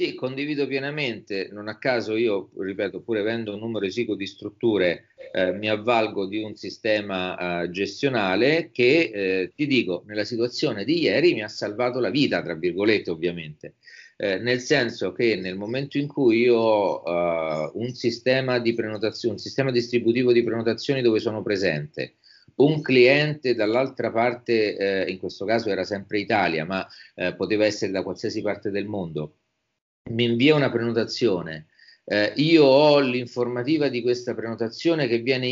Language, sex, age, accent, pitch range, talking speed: Italian, male, 40-59, native, 110-140 Hz, 160 wpm